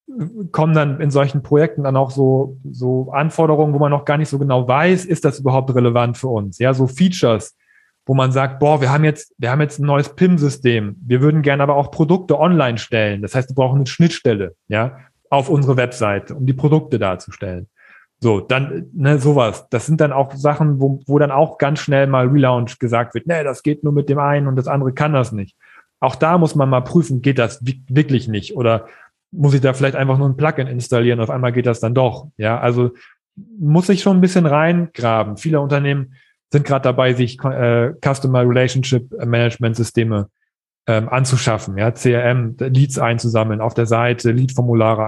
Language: German